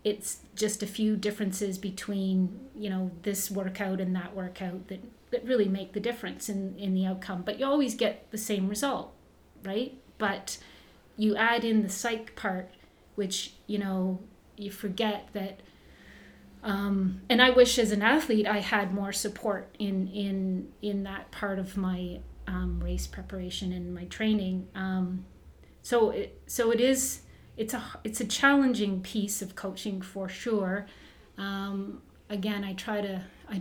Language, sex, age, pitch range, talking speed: English, female, 30-49, 190-210 Hz, 160 wpm